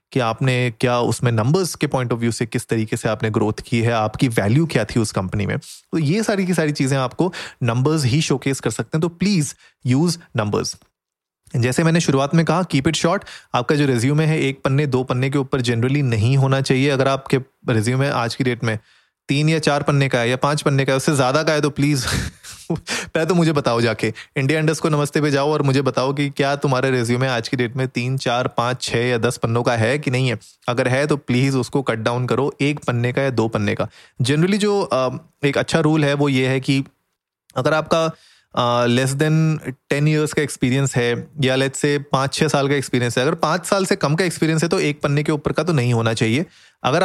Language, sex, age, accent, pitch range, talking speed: Hindi, male, 30-49, native, 120-155 Hz, 235 wpm